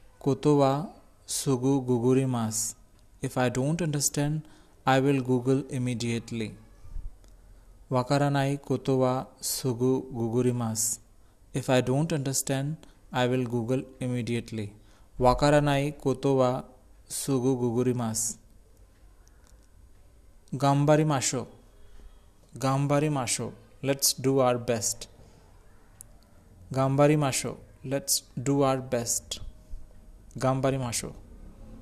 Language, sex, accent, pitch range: Japanese, male, Indian, 100-135 Hz